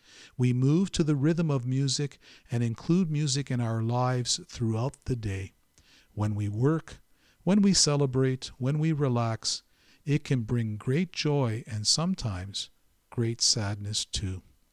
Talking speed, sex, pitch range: 145 wpm, male, 110-150 Hz